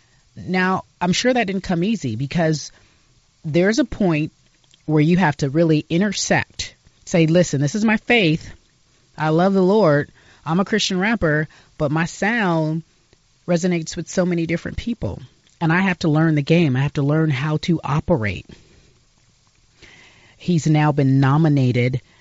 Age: 30-49